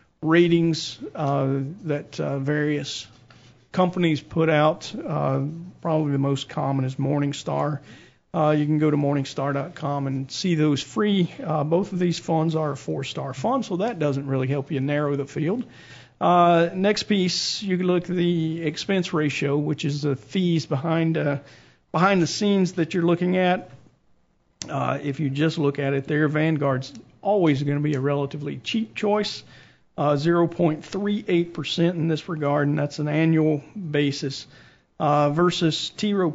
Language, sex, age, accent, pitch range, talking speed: English, male, 50-69, American, 145-170 Hz, 160 wpm